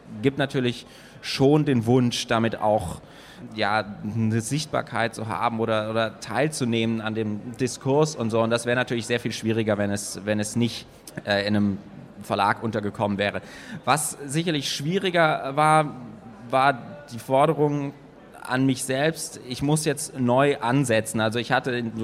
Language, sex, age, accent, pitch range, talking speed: German, male, 20-39, German, 120-150 Hz, 150 wpm